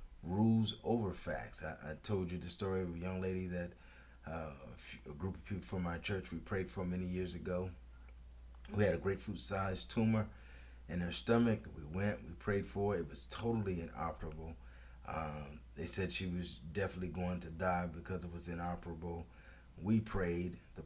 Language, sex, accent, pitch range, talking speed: English, male, American, 80-95 Hz, 185 wpm